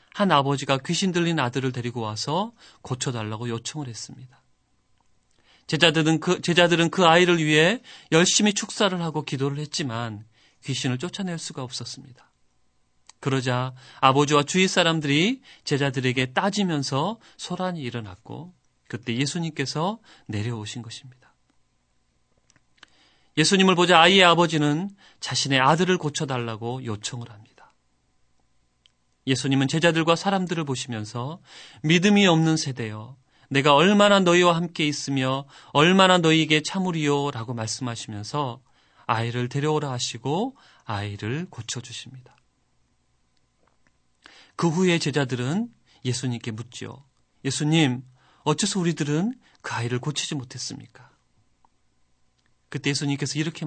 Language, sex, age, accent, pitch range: Korean, male, 30-49, native, 120-170 Hz